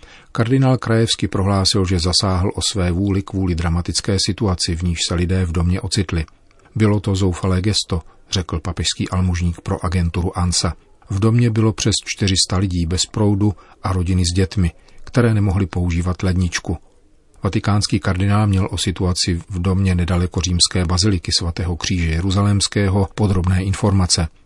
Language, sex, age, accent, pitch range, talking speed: Czech, male, 40-59, native, 90-100 Hz, 145 wpm